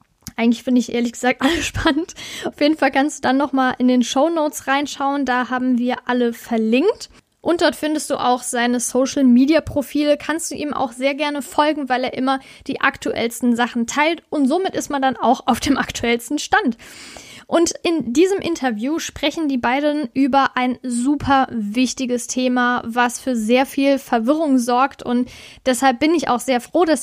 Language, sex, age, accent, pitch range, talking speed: German, female, 10-29, German, 245-290 Hz, 185 wpm